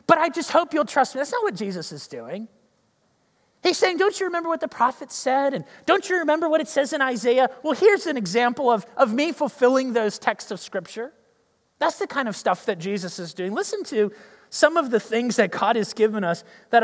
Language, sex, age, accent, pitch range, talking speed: English, male, 30-49, American, 215-295 Hz, 230 wpm